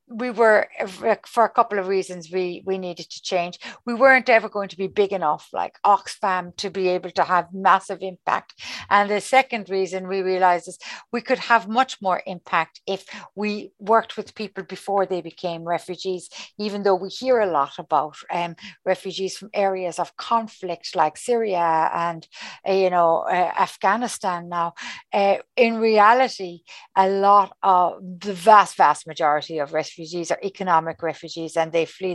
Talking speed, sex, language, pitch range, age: 170 wpm, female, English, 170-200 Hz, 60-79